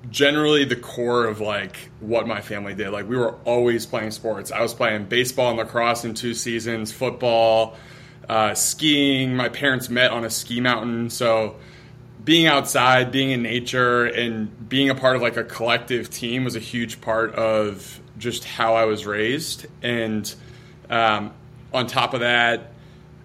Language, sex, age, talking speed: English, male, 20-39, 170 wpm